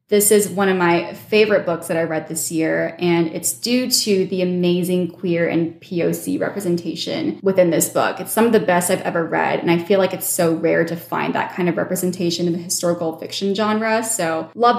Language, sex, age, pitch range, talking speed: English, female, 20-39, 170-200 Hz, 215 wpm